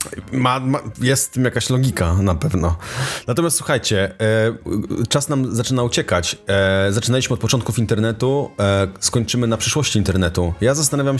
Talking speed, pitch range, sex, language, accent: 150 wpm, 100-125 Hz, male, Polish, native